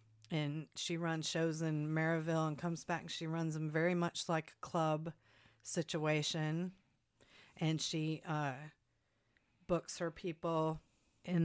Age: 40-59